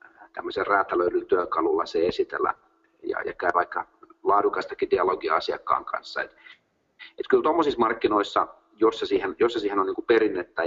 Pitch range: 340-400 Hz